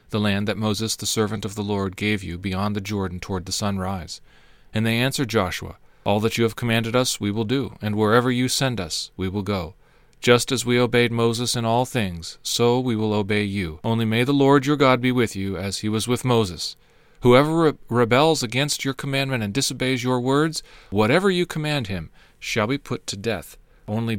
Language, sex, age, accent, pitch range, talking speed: English, male, 40-59, American, 105-140 Hz, 210 wpm